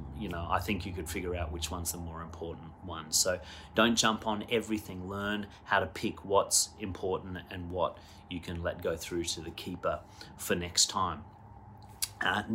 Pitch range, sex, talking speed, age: 90-105 Hz, male, 185 wpm, 30-49